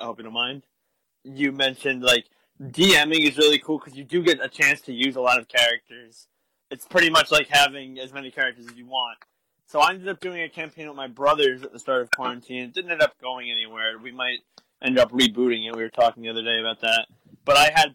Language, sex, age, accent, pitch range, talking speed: English, male, 20-39, American, 125-175 Hz, 245 wpm